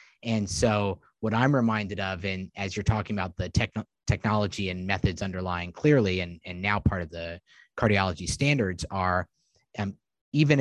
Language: English